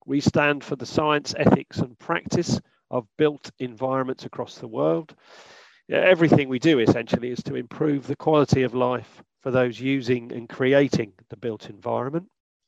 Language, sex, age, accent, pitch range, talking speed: English, male, 40-59, British, 125-150 Hz, 155 wpm